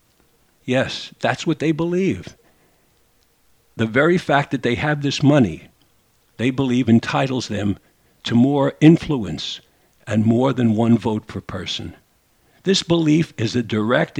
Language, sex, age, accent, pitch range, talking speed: English, male, 60-79, American, 115-160 Hz, 135 wpm